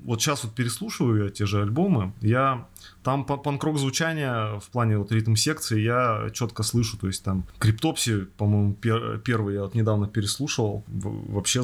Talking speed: 155 wpm